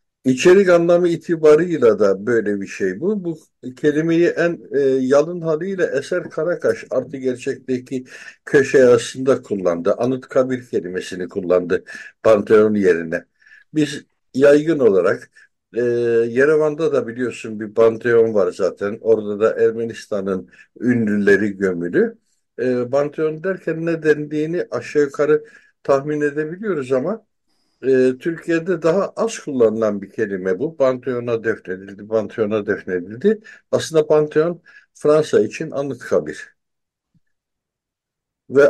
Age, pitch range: 60-79, 115-165 Hz